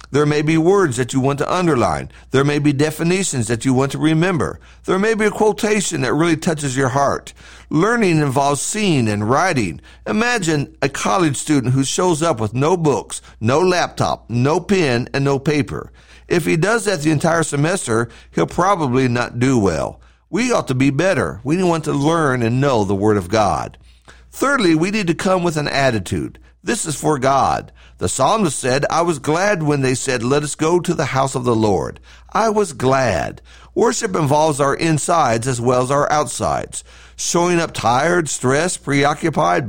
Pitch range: 125-175 Hz